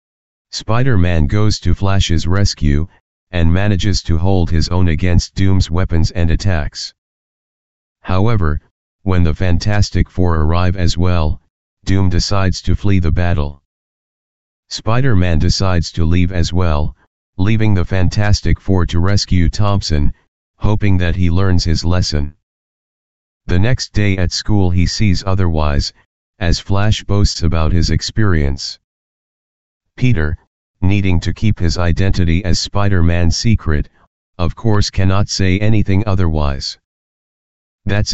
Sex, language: male, English